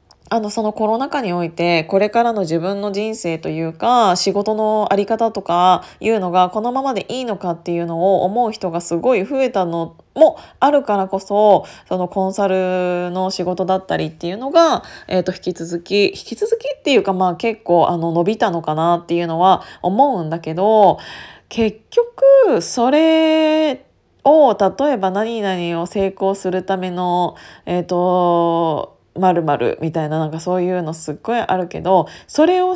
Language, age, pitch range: Japanese, 20-39, 175-250 Hz